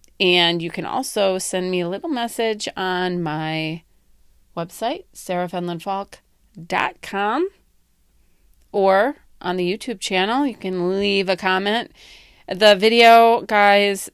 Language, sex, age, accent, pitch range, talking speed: English, female, 30-49, American, 175-225 Hz, 110 wpm